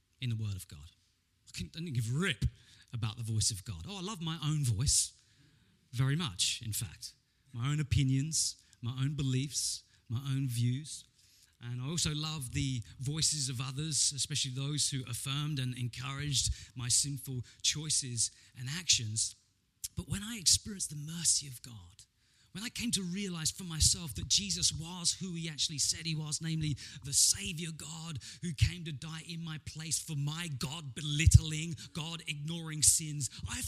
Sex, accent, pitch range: male, British, 120-180 Hz